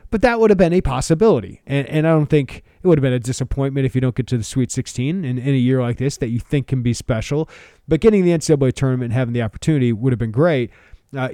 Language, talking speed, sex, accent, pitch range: English, 275 wpm, male, American, 115-155 Hz